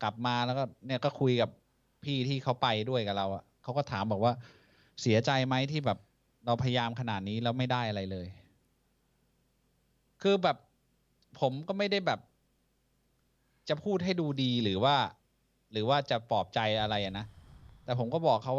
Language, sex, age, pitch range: Thai, male, 20-39, 115-155 Hz